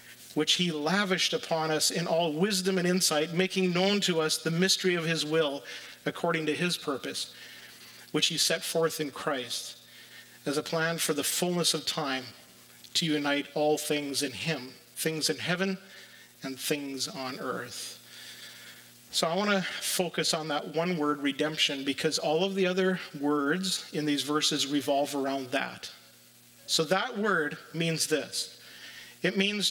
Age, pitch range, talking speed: 40-59, 140-185 Hz, 160 wpm